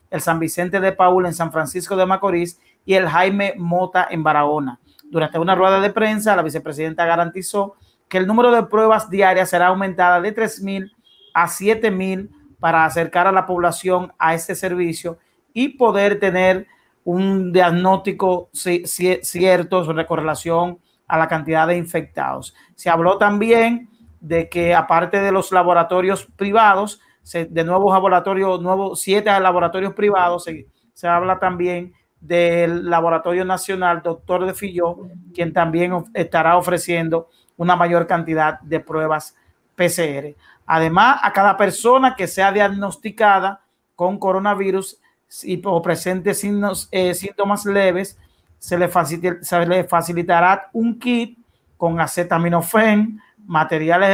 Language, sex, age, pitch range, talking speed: Spanish, male, 40-59, 170-195 Hz, 130 wpm